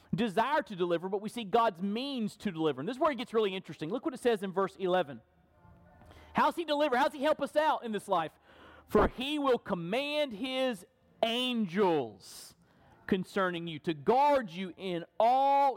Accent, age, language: American, 40-59, English